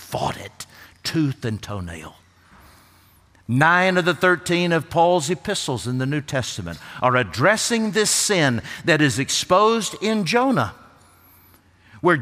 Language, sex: English, male